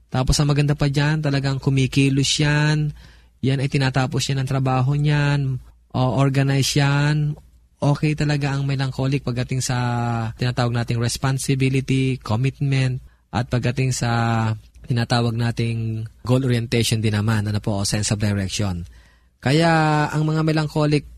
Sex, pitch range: male, 115-140 Hz